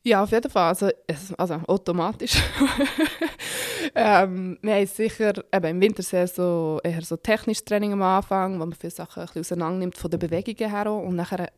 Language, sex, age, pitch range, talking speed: German, female, 20-39, 170-200 Hz, 170 wpm